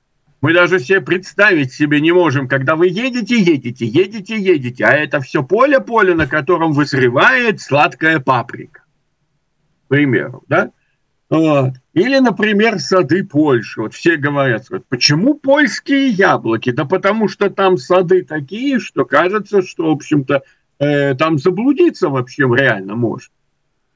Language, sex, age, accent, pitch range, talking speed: Russian, male, 50-69, native, 140-195 Hz, 130 wpm